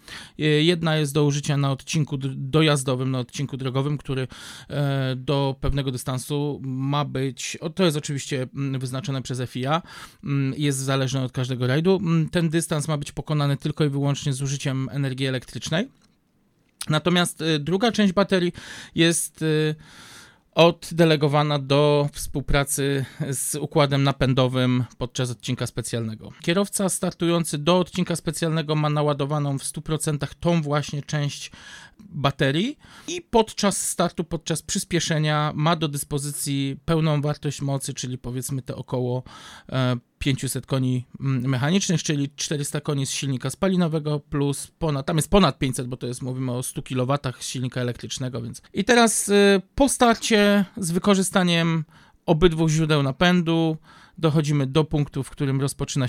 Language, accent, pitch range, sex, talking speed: Polish, native, 135-170 Hz, male, 135 wpm